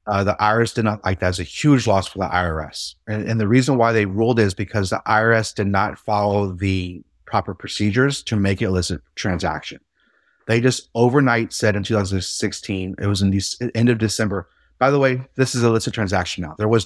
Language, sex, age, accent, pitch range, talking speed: English, male, 30-49, American, 95-115 Hz, 215 wpm